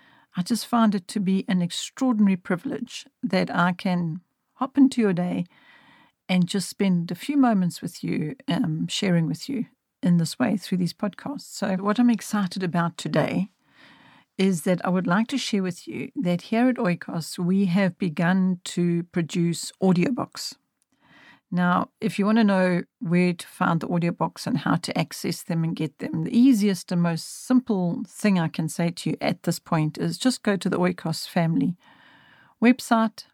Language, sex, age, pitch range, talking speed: English, female, 60-79, 175-230 Hz, 180 wpm